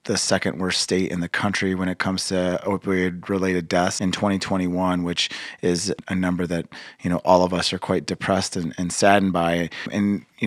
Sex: male